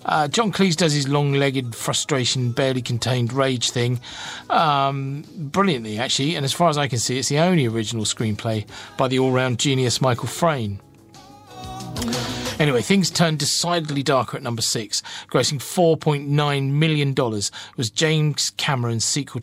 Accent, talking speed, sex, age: British, 140 wpm, male, 40-59